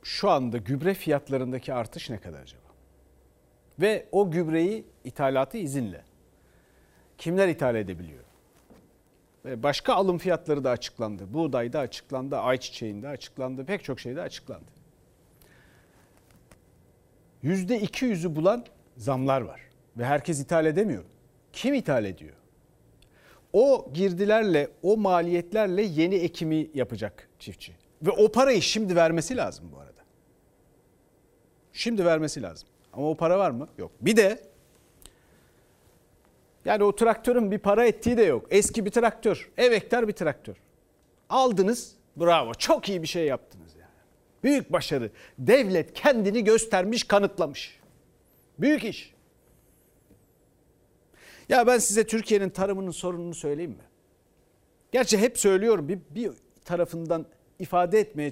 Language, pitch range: Turkish, 130-210 Hz